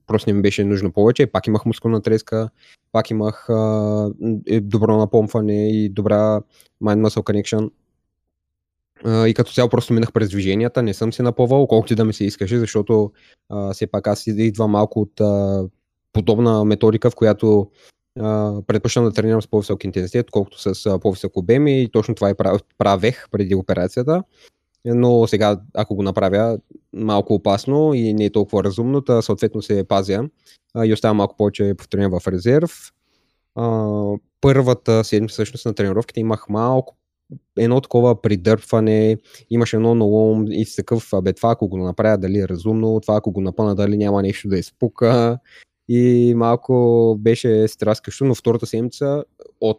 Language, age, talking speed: Bulgarian, 20-39, 160 wpm